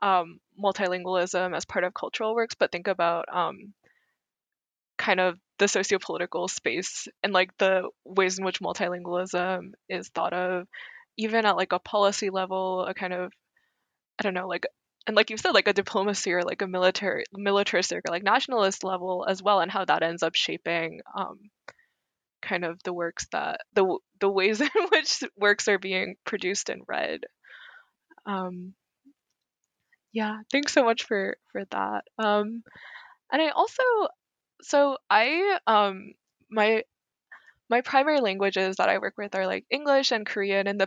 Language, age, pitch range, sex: English, 20-39, 190-255 Hz, female